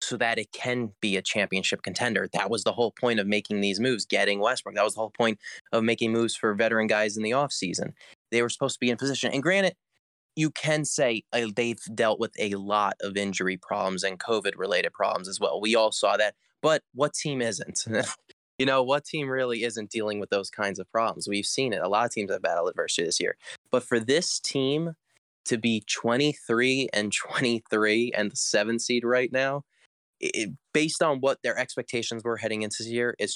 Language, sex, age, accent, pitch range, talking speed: English, male, 20-39, American, 105-130 Hz, 210 wpm